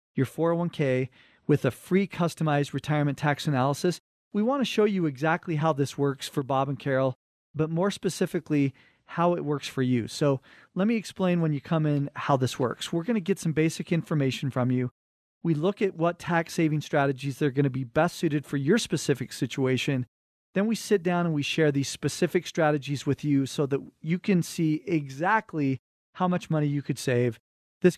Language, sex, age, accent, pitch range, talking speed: English, male, 40-59, American, 135-170 Hz, 195 wpm